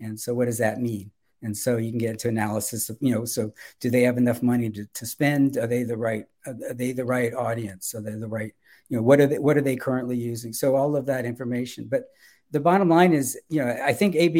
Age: 50-69